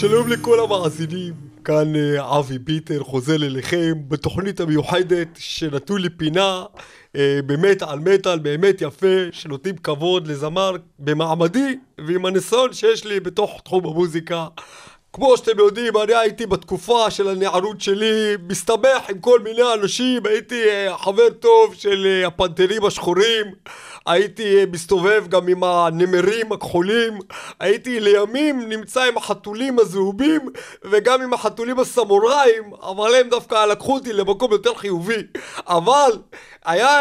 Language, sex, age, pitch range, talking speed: Hebrew, male, 40-59, 180-250 Hz, 120 wpm